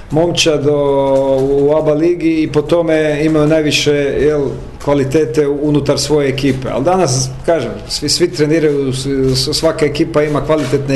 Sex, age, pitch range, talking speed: male, 40-59, 135-170 Hz, 130 wpm